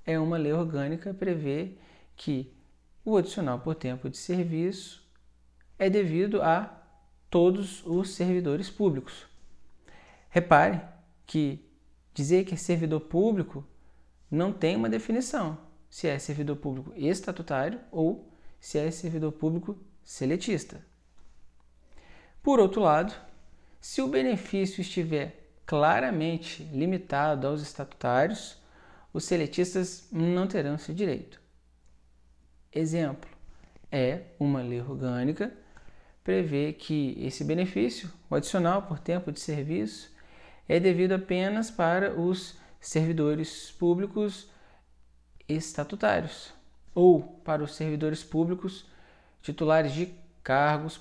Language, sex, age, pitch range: Portuguese, male, 40-59, 135-180 Hz